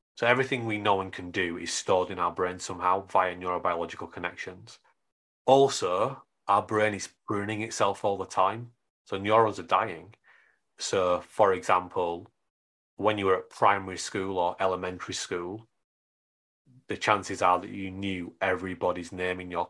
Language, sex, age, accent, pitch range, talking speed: English, male, 30-49, British, 90-105 Hz, 155 wpm